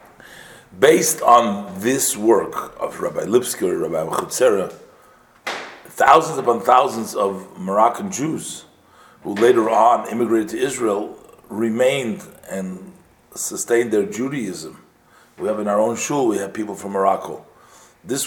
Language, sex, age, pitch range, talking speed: English, male, 40-59, 95-115 Hz, 130 wpm